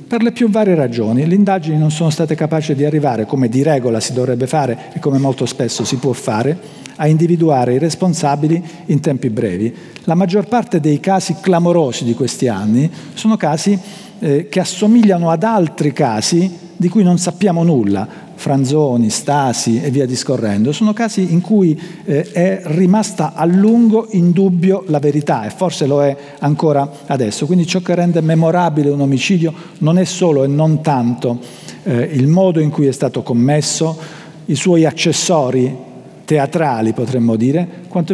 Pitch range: 125-170 Hz